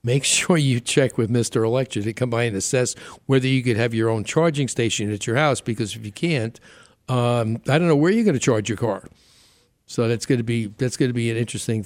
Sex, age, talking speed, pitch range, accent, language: male, 60-79, 250 wpm, 115-140 Hz, American, English